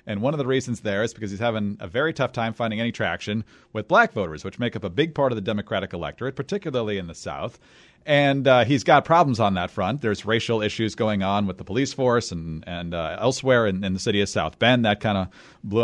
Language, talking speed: English, 250 wpm